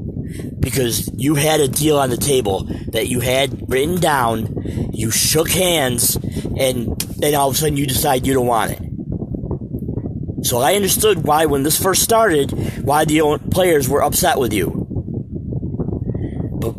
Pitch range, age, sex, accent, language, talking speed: 110-145 Hz, 40-59, male, American, English, 155 wpm